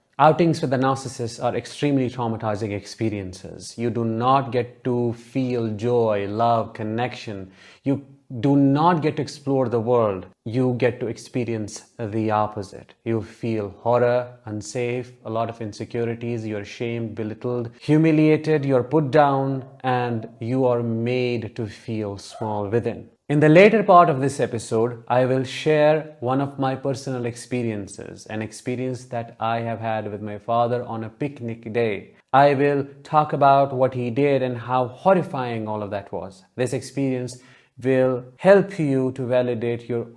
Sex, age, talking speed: male, 30-49, 155 wpm